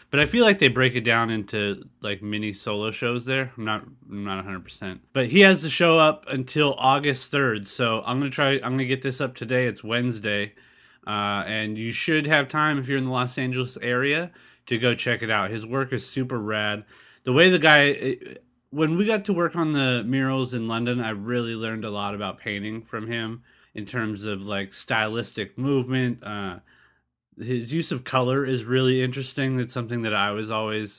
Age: 30-49